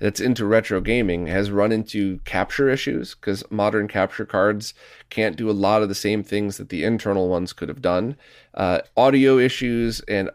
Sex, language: male, English